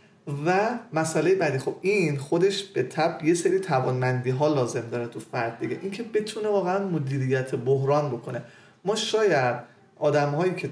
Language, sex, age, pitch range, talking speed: Persian, male, 30-49, 130-175 Hz, 155 wpm